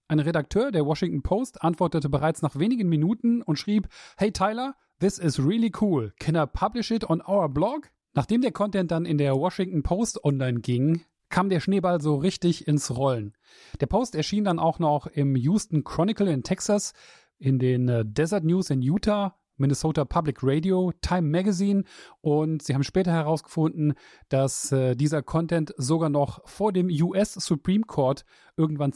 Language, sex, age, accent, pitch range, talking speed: German, male, 30-49, German, 140-190 Hz, 165 wpm